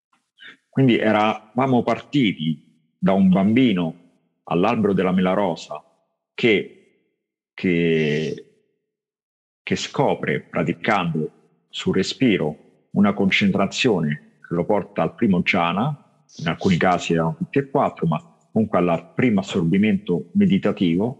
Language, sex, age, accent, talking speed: Italian, male, 50-69, native, 110 wpm